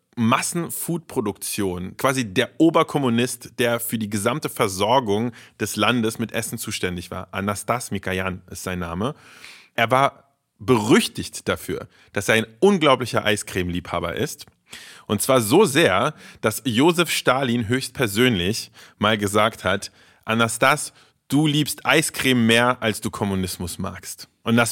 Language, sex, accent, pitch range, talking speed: German, male, German, 105-135 Hz, 125 wpm